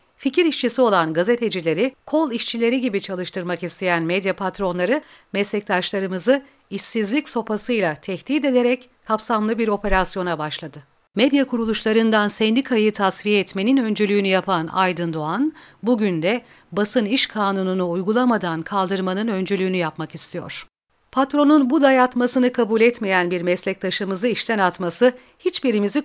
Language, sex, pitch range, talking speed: Turkish, female, 185-245 Hz, 115 wpm